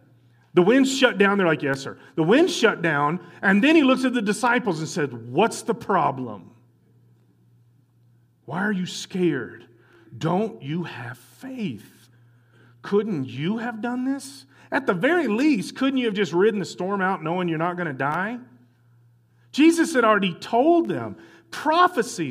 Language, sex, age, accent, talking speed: English, male, 40-59, American, 165 wpm